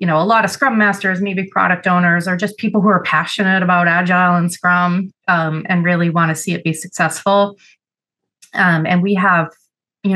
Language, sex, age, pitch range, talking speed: English, female, 30-49, 165-200 Hz, 200 wpm